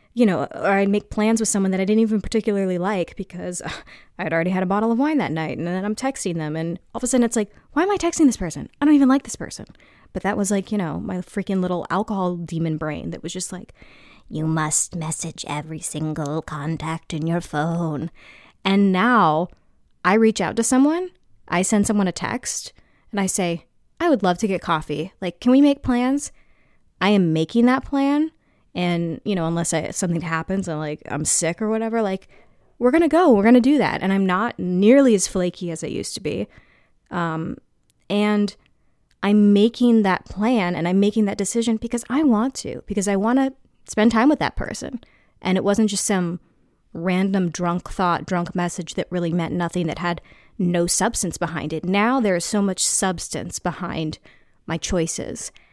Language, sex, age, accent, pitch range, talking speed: English, female, 20-39, American, 170-220 Hz, 205 wpm